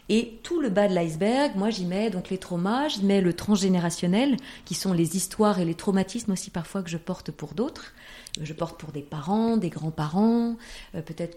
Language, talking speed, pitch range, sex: French, 205 wpm, 170-220 Hz, female